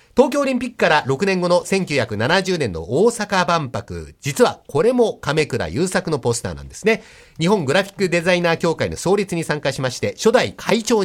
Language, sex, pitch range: Japanese, male, 135-195 Hz